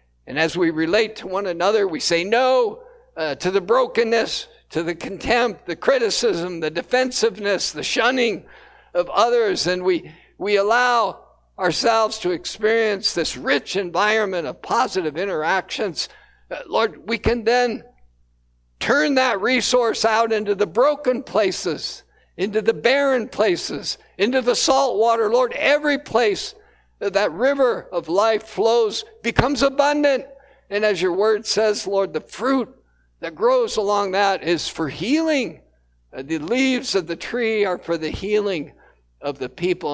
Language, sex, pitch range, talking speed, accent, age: English, male, 175-255 Hz, 145 wpm, American, 60-79